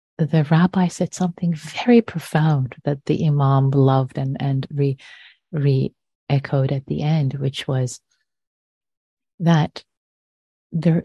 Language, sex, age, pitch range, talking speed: English, female, 30-49, 135-165 Hz, 115 wpm